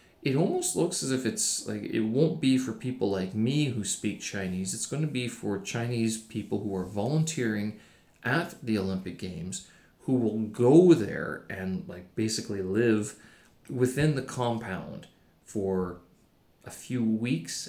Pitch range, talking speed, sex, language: 100-125 Hz, 155 wpm, male, English